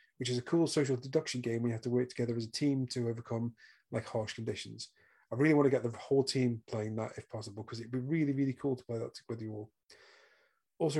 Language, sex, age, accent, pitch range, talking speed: English, male, 30-49, British, 120-145 Hz, 250 wpm